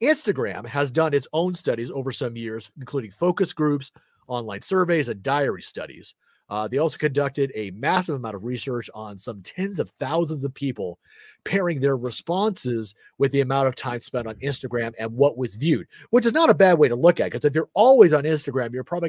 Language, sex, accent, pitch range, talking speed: English, male, American, 125-170 Hz, 205 wpm